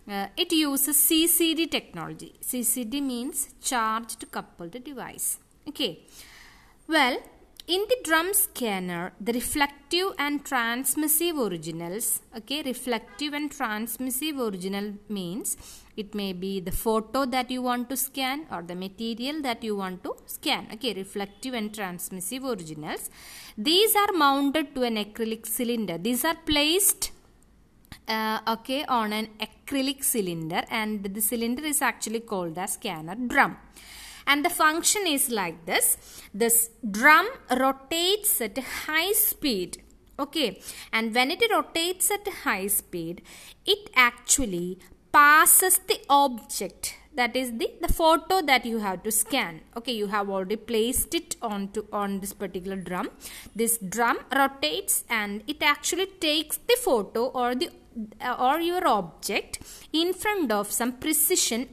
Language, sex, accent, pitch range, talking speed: English, female, Indian, 215-305 Hz, 140 wpm